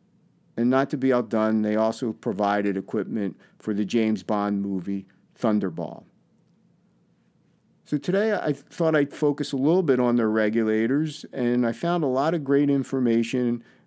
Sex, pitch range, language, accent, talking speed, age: male, 105-135 Hz, English, American, 150 wpm, 50-69